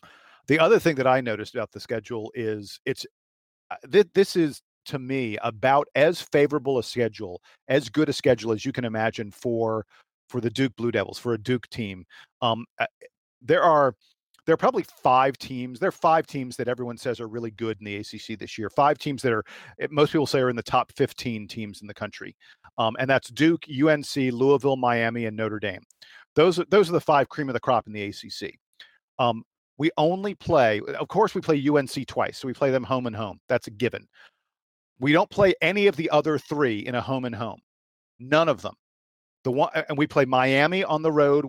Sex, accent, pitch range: male, American, 115-155 Hz